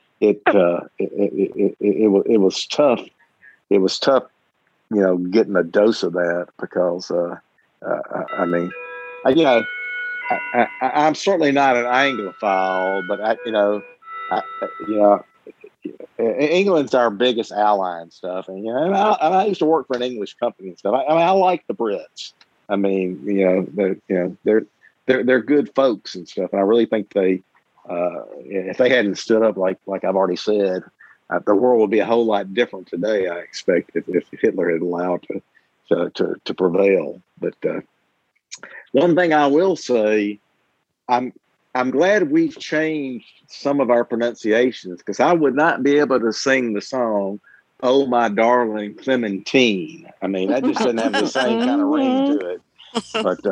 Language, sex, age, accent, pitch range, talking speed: English, male, 50-69, American, 95-150 Hz, 185 wpm